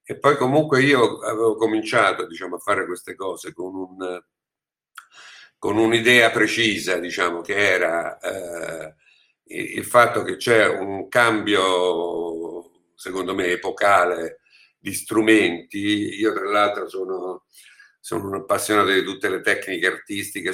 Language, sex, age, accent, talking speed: Italian, male, 50-69, native, 115 wpm